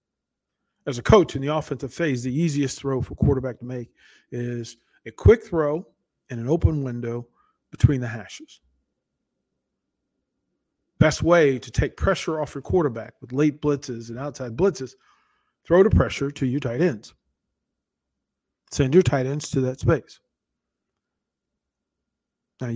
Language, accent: English, American